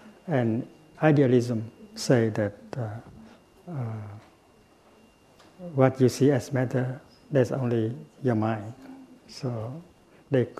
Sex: male